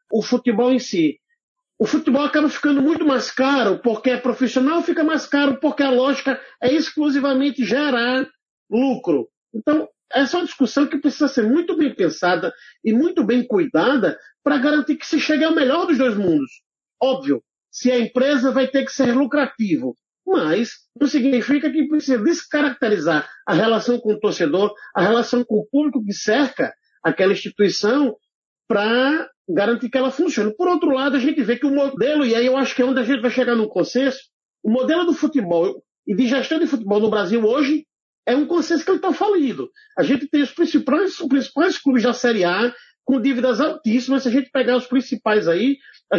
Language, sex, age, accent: Portuguese, male, 50-69, Brazilian